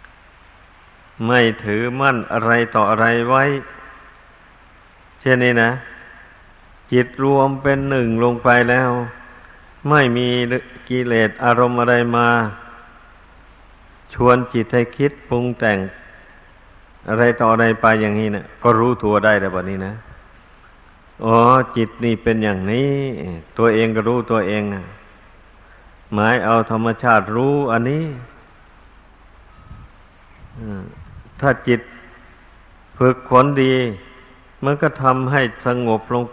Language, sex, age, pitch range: Thai, male, 60-79, 100-125 Hz